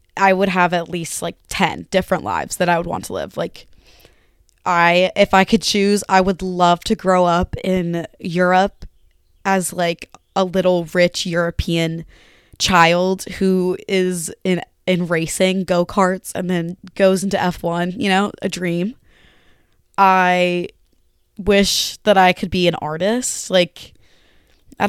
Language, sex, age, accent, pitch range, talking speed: English, female, 20-39, American, 170-195 Hz, 145 wpm